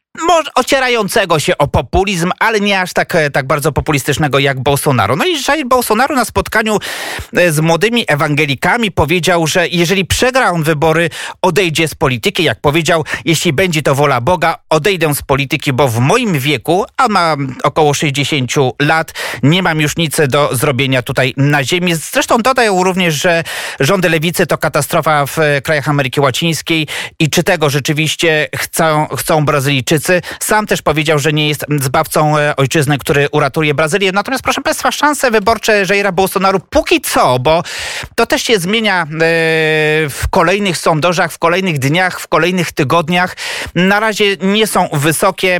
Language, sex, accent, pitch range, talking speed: Polish, male, native, 150-185 Hz, 155 wpm